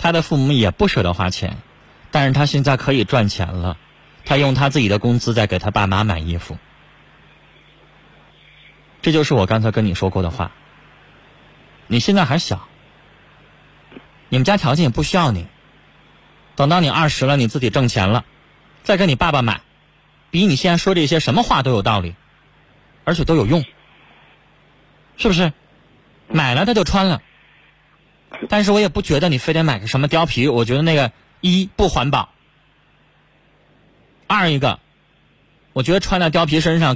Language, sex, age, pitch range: Chinese, male, 30-49, 120-170 Hz